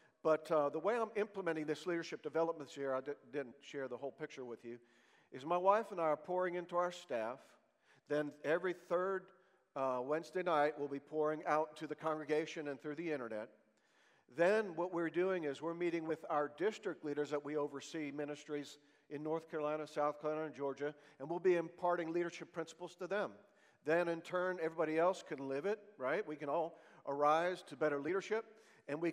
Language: English